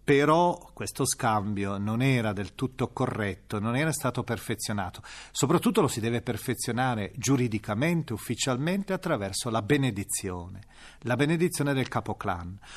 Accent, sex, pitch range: native, male, 115-175 Hz